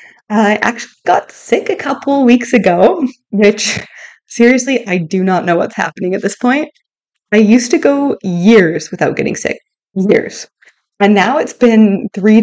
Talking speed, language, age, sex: 160 wpm, English, 20-39, female